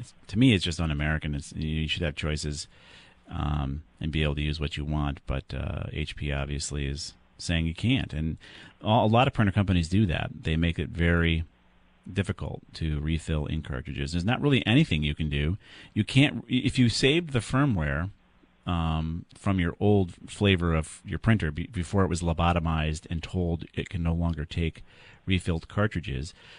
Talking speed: 180 wpm